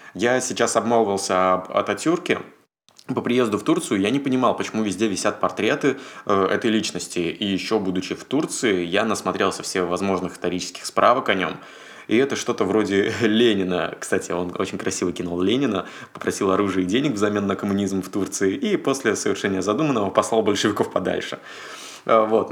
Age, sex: 20-39, male